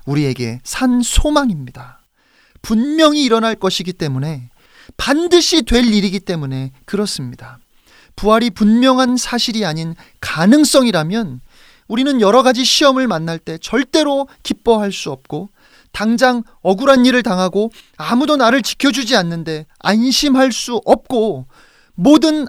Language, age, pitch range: Korean, 30-49, 180-270 Hz